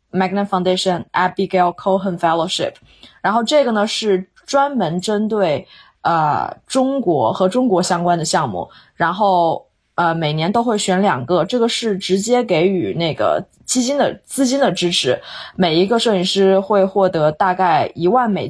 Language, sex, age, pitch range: Chinese, female, 20-39, 170-205 Hz